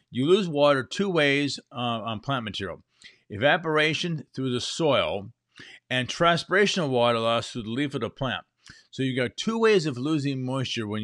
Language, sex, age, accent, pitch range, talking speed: English, male, 50-69, American, 120-150 Hz, 180 wpm